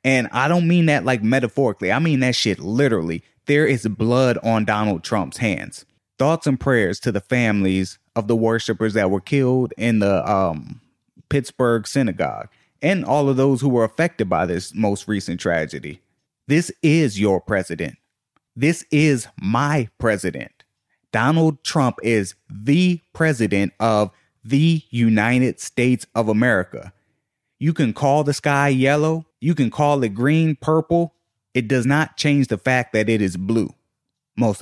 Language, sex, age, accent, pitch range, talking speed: English, male, 30-49, American, 110-140 Hz, 155 wpm